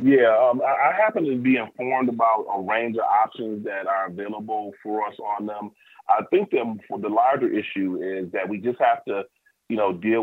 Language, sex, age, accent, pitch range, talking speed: English, male, 30-49, American, 95-110 Hz, 195 wpm